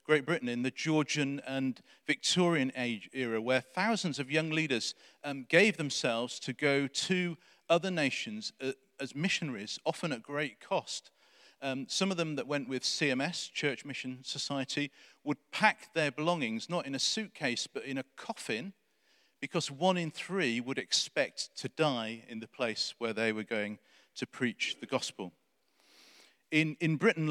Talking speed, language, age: 160 wpm, English, 40-59